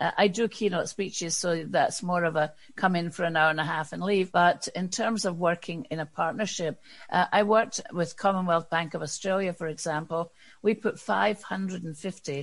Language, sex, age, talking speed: English, female, 60-79, 195 wpm